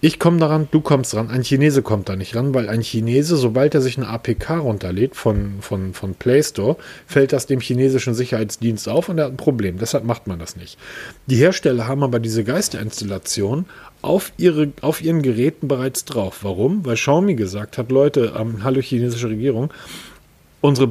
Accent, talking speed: German, 190 wpm